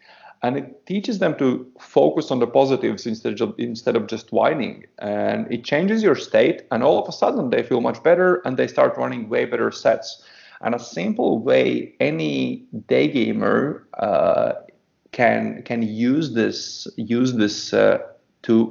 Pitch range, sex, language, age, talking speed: 115-175 Hz, male, English, 40-59, 165 wpm